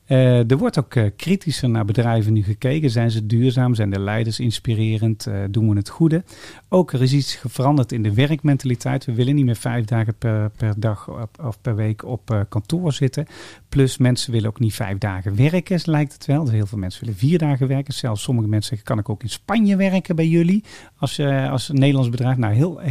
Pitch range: 110-140 Hz